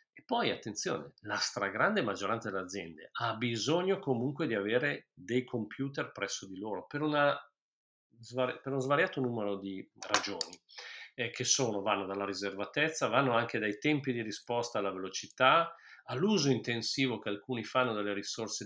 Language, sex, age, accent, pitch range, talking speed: Italian, male, 40-59, native, 105-145 Hz, 150 wpm